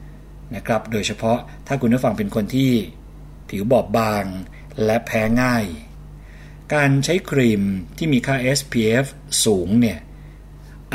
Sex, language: male, Thai